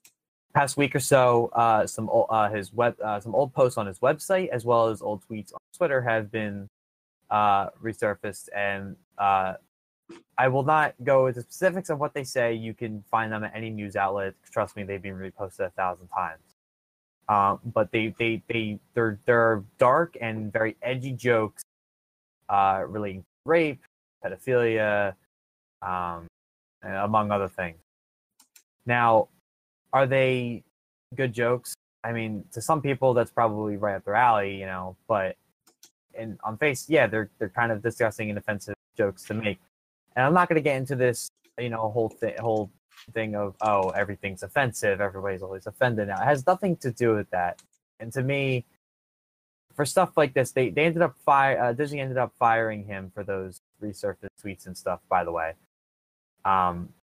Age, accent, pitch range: 20-39, American, 100-125 Hz